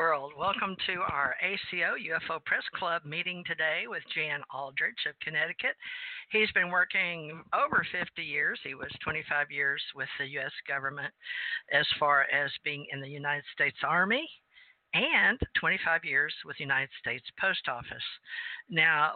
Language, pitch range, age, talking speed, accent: English, 150-200 Hz, 60-79, 145 wpm, American